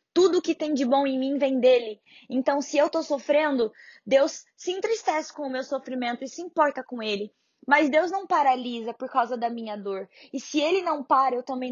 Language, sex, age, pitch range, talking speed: Portuguese, female, 20-39, 245-285 Hz, 215 wpm